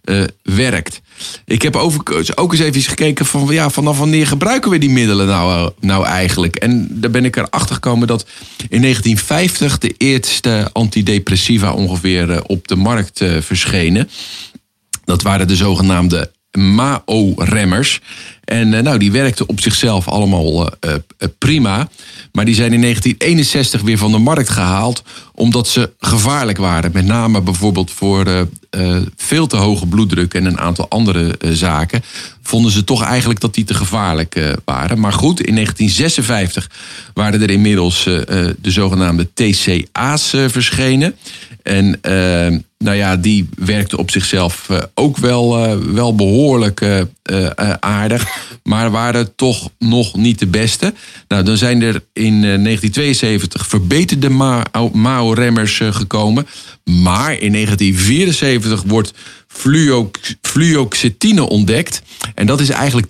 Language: Dutch